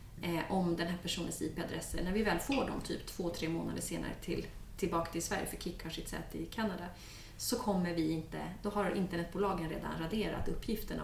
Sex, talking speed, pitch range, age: female, 190 wpm, 175-230 Hz, 30-49